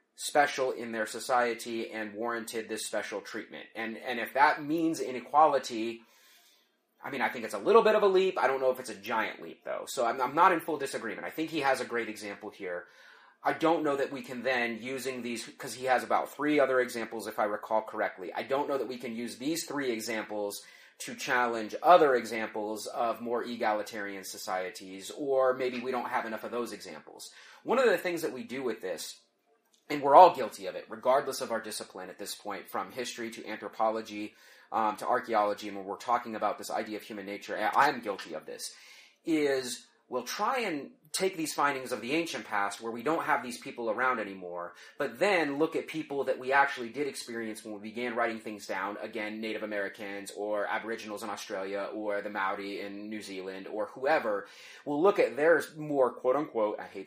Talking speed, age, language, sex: 210 wpm, 30-49, English, male